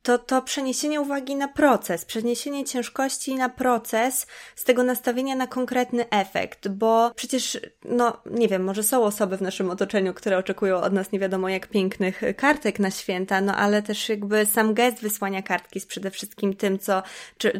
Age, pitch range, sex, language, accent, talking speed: 20-39, 200-245 Hz, female, Polish, native, 175 wpm